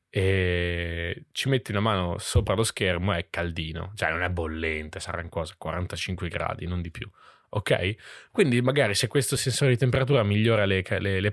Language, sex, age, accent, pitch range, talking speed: Italian, male, 20-39, native, 95-125 Hz, 175 wpm